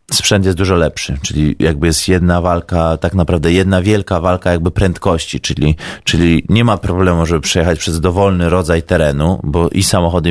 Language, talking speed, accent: Polish, 175 wpm, native